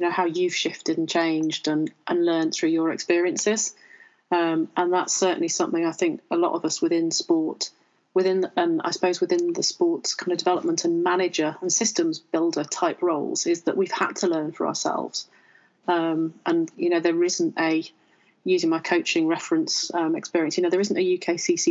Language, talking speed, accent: English, 190 wpm, British